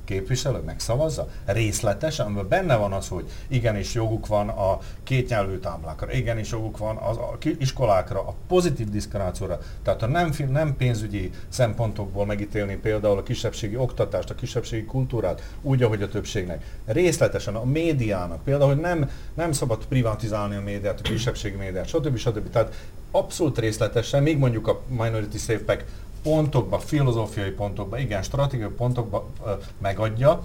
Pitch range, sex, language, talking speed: 100-135 Hz, male, Hungarian, 150 wpm